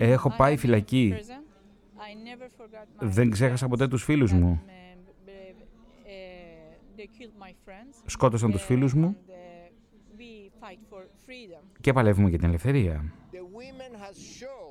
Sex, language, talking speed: male, Greek, 75 wpm